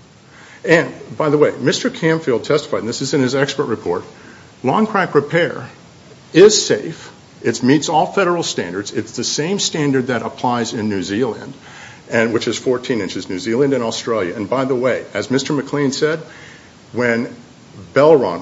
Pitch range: 120-155 Hz